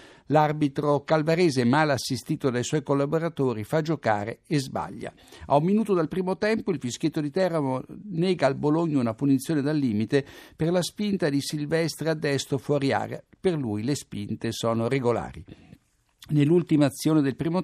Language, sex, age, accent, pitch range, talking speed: Italian, male, 60-79, native, 125-155 Hz, 160 wpm